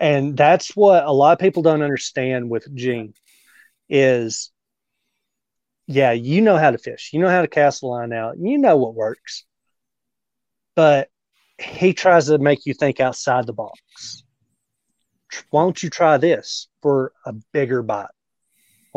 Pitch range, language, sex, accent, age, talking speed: 125-150 Hz, English, male, American, 30-49, 160 wpm